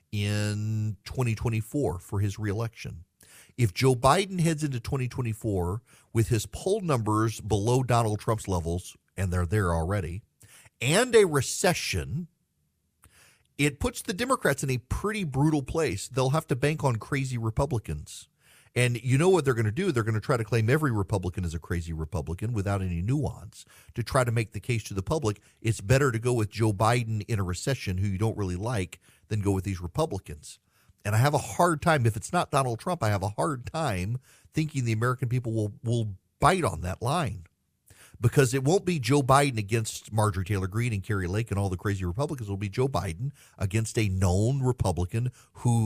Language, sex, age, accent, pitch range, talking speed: English, male, 40-59, American, 100-140 Hz, 190 wpm